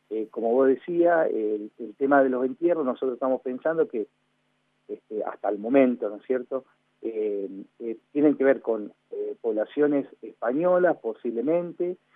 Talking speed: 160 wpm